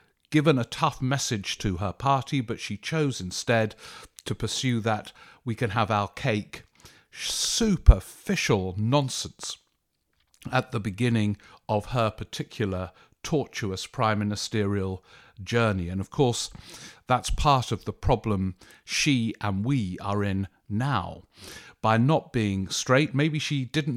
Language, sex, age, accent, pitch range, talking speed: English, male, 50-69, British, 100-130 Hz, 130 wpm